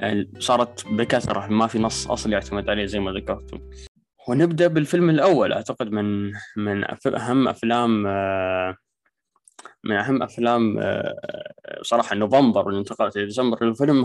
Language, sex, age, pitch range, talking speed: Arabic, male, 20-39, 105-135 Hz, 120 wpm